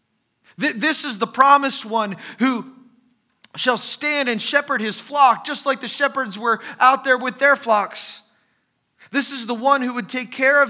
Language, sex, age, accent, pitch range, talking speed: English, male, 30-49, American, 195-265 Hz, 175 wpm